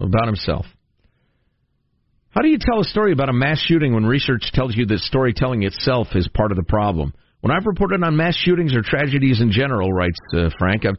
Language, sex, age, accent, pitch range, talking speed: English, male, 50-69, American, 110-145 Hz, 210 wpm